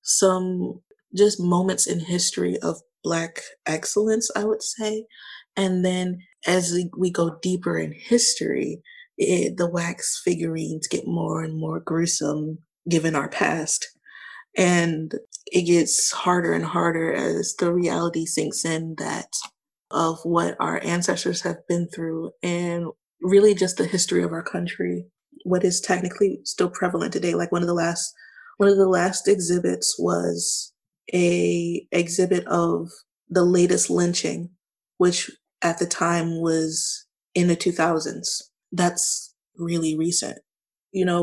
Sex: female